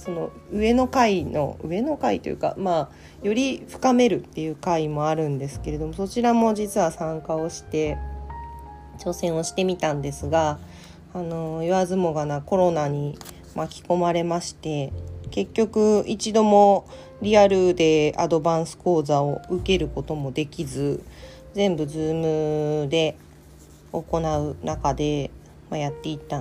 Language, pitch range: Japanese, 140-180 Hz